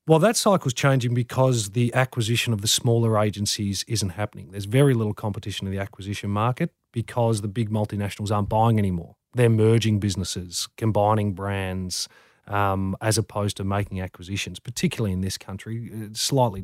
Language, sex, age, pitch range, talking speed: English, male, 30-49, 100-120 Hz, 160 wpm